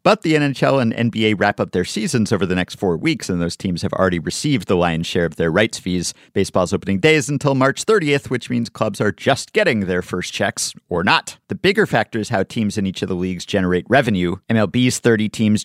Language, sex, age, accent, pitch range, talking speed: English, male, 50-69, American, 95-135 Hz, 230 wpm